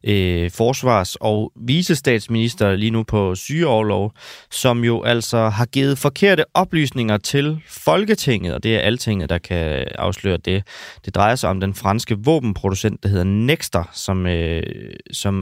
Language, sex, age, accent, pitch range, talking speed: Danish, male, 20-39, native, 100-130 Hz, 135 wpm